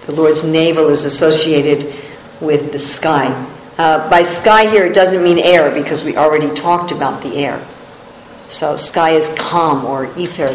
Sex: female